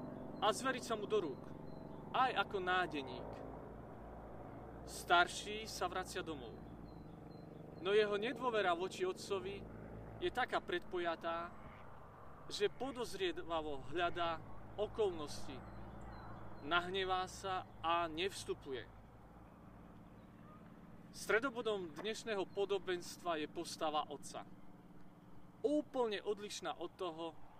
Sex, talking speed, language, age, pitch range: male, 85 wpm, Slovak, 40-59, 160-220 Hz